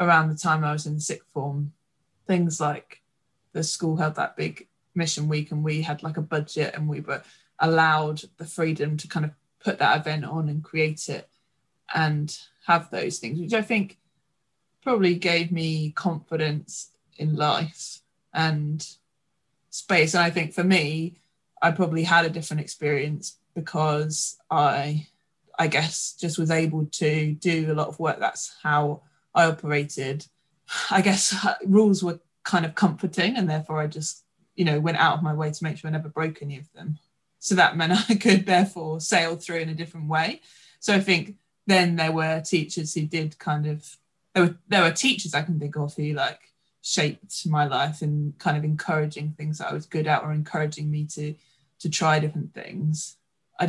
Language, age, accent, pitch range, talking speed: English, 20-39, British, 150-170 Hz, 185 wpm